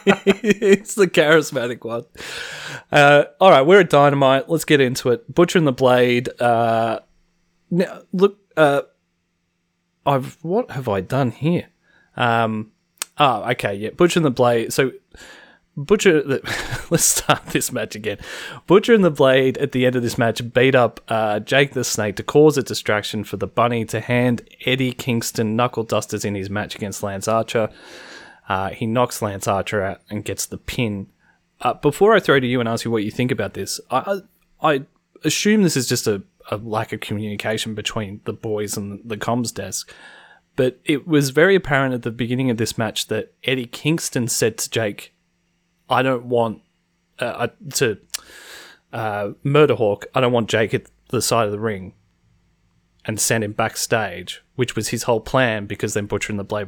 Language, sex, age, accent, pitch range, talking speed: English, male, 20-39, Australian, 105-140 Hz, 180 wpm